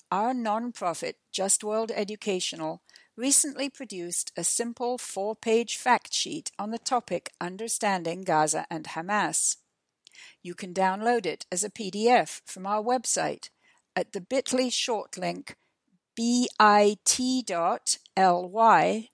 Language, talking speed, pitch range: English, 110 wpm, 185-250 Hz